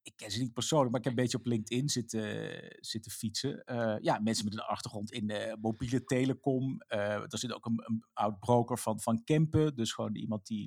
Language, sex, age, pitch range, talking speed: Dutch, male, 50-69, 120-170 Hz, 225 wpm